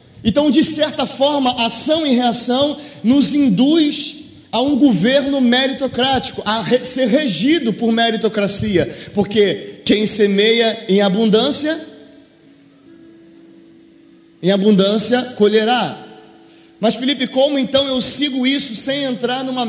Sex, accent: male, Brazilian